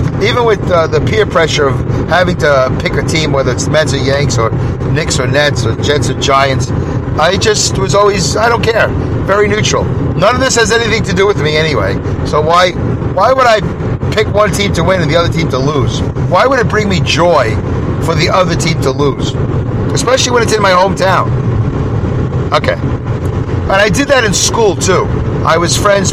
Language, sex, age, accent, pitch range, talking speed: English, male, 40-59, American, 125-155 Hz, 205 wpm